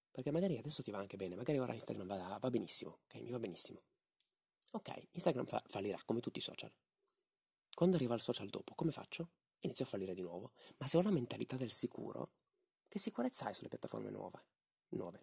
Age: 30-49